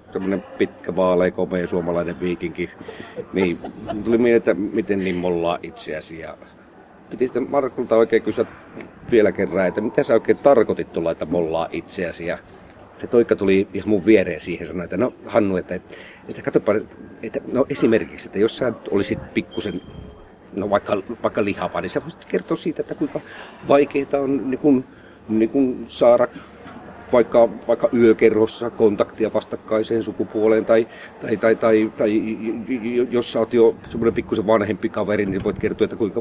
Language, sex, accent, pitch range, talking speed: Finnish, male, native, 95-125 Hz, 160 wpm